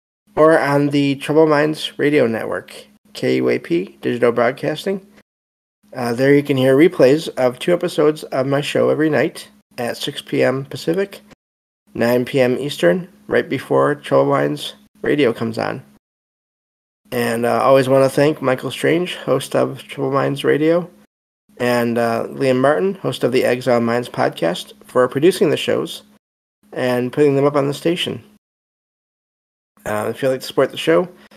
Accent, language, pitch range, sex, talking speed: American, English, 120-145 Hz, male, 155 wpm